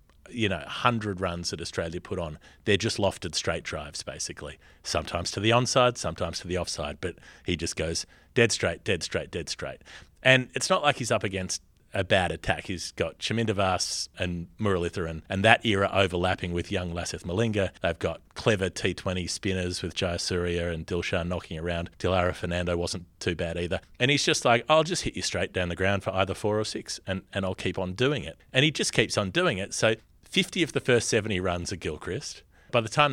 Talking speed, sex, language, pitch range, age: 210 wpm, male, English, 85-110 Hz, 30-49